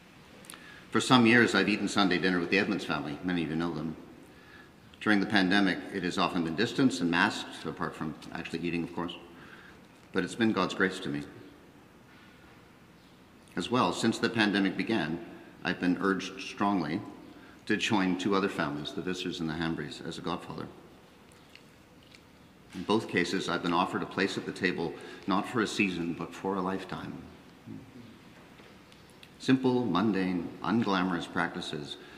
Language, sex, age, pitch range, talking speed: English, male, 50-69, 80-95 Hz, 160 wpm